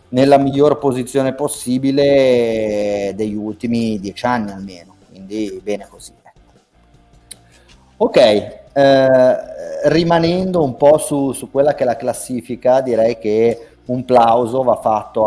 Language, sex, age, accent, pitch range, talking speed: Italian, male, 30-49, native, 105-120 Hz, 115 wpm